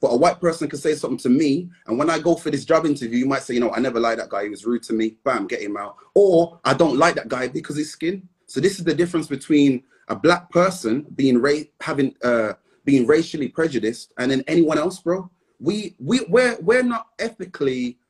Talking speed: 240 wpm